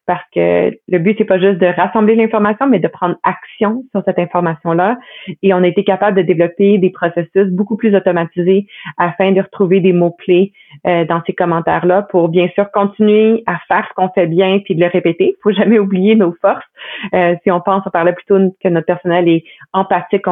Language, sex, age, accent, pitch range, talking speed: French, female, 30-49, Canadian, 175-195 Hz, 215 wpm